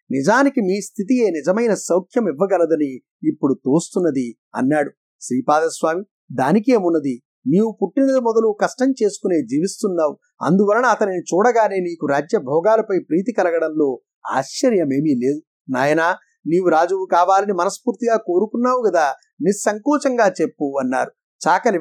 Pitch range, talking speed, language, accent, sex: 155-225 Hz, 105 wpm, Telugu, native, male